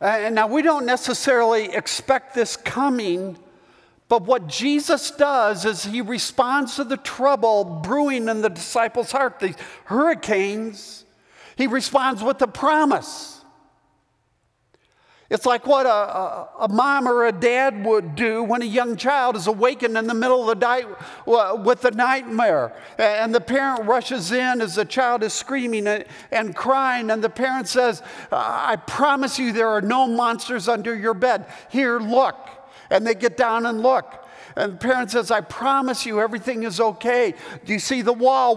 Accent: American